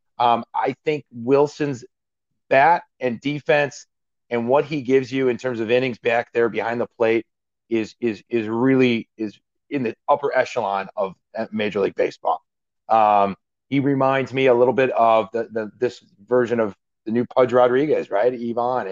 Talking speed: 170 wpm